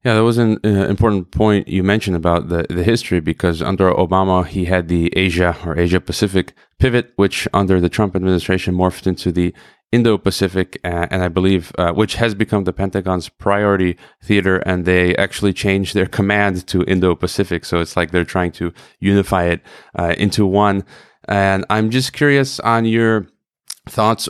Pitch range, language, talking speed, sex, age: 95-105 Hz, English, 180 wpm, male, 30-49